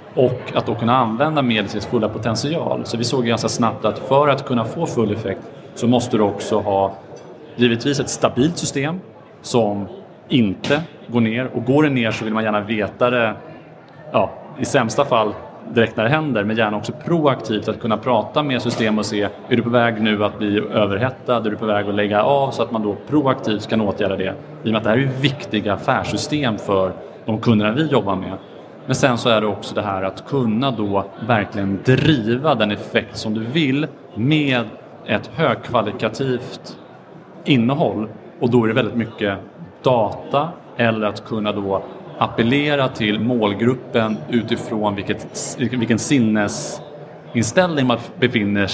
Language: Swedish